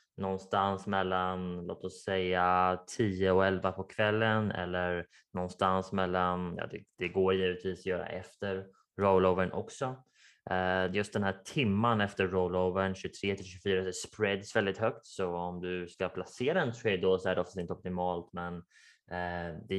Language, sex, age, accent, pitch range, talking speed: Swedish, male, 20-39, Norwegian, 90-95 Hz, 160 wpm